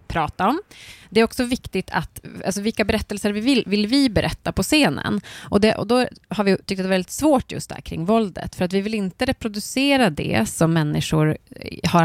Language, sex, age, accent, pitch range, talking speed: Swedish, female, 30-49, native, 160-215 Hz, 210 wpm